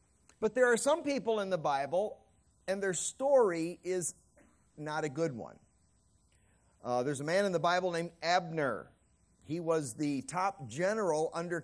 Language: English